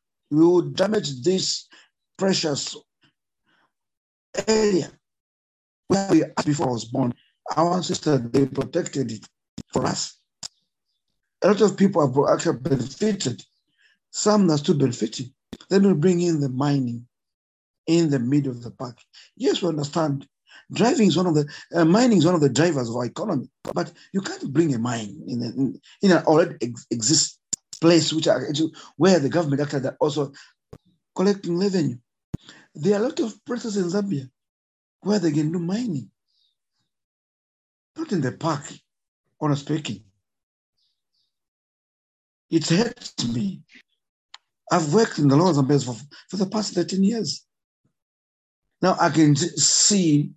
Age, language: 50-69, English